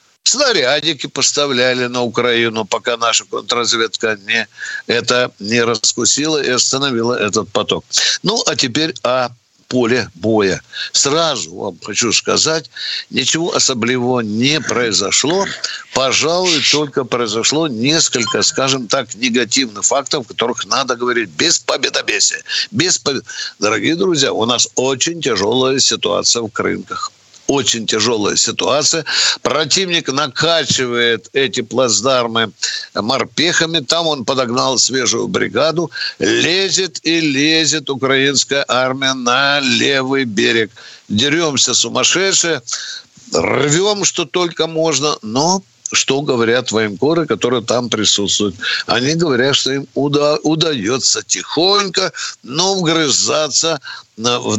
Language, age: Russian, 60-79